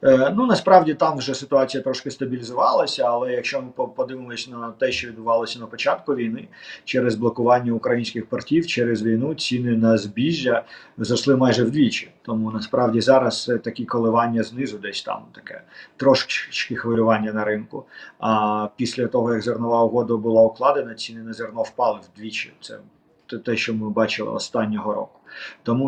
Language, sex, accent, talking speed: Ukrainian, male, native, 155 wpm